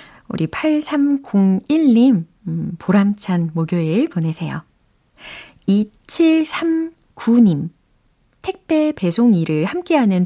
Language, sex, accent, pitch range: Korean, female, native, 165-230 Hz